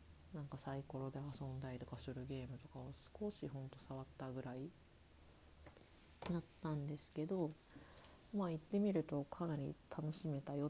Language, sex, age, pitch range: Japanese, female, 40-59, 135-175 Hz